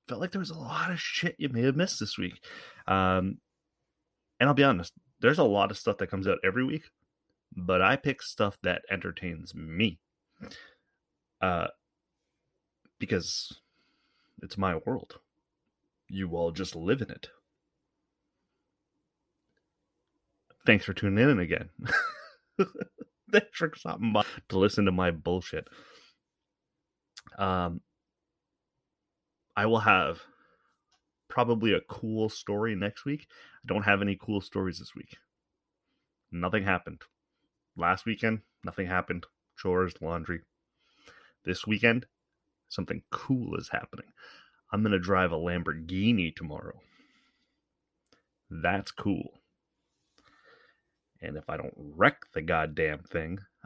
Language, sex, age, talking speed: English, male, 30-49, 125 wpm